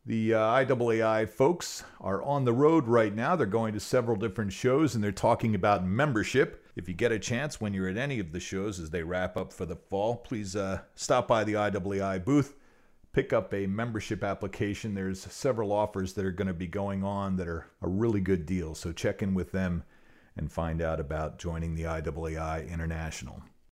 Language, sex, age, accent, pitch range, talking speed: English, male, 50-69, American, 85-105 Hz, 205 wpm